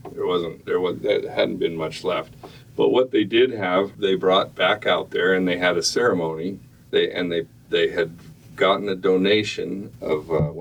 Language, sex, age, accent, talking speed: English, male, 50-69, American, 190 wpm